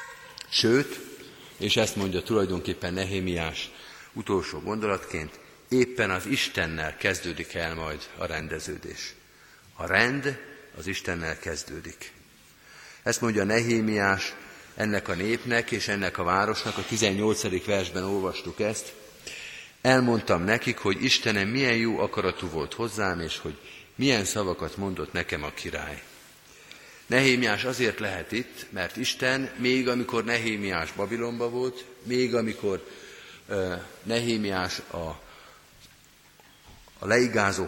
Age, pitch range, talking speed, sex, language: 50-69, 95-120 Hz, 110 wpm, male, Hungarian